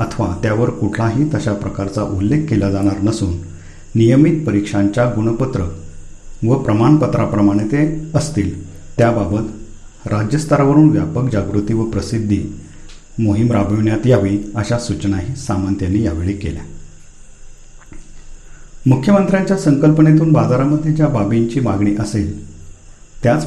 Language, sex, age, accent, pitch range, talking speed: Marathi, male, 50-69, native, 100-130 Hz, 95 wpm